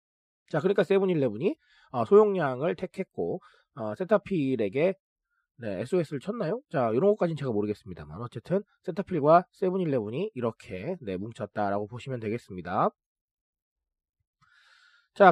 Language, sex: Korean, male